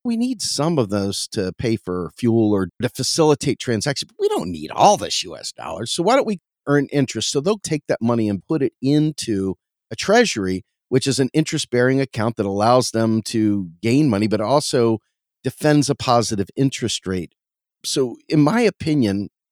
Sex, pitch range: male, 110-145 Hz